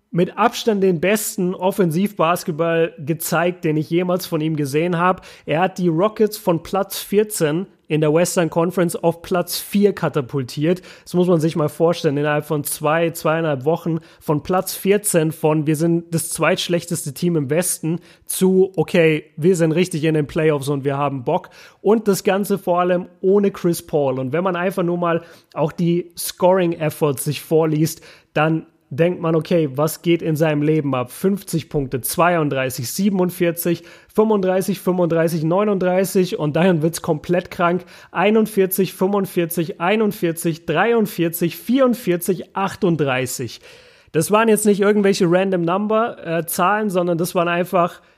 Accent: German